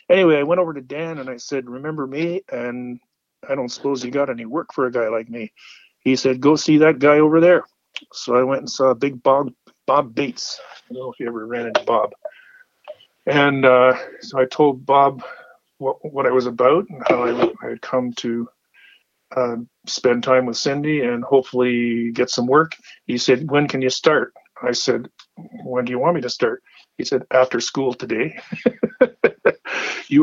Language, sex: English, male